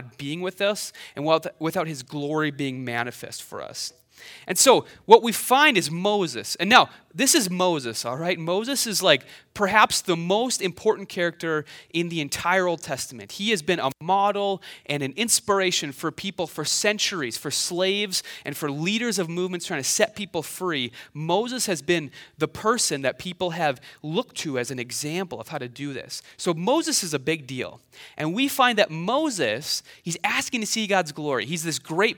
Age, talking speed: 30-49, 185 wpm